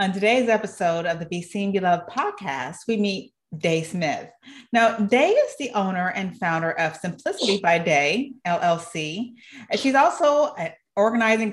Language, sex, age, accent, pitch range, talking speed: English, female, 40-59, American, 180-235 Hz, 155 wpm